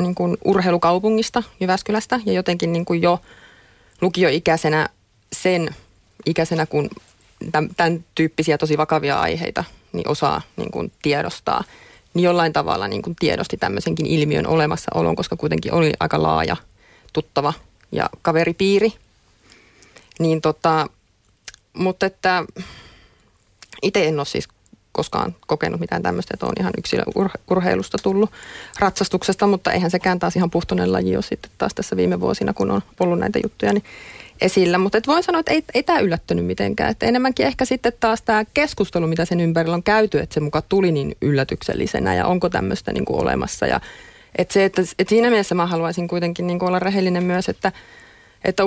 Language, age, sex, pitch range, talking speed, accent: Finnish, 30-49, female, 155-195 Hz, 155 wpm, native